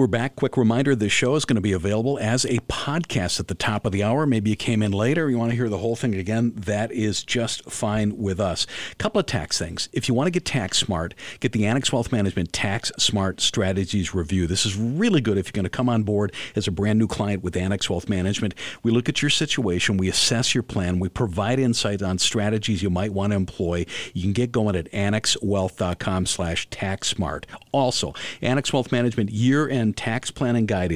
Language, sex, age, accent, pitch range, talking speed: English, male, 50-69, American, 100-125 Hz, 225 wpm